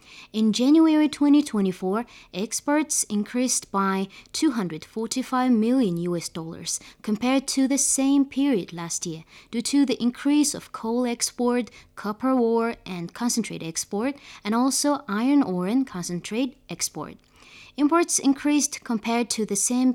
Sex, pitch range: female, 195-255 Hz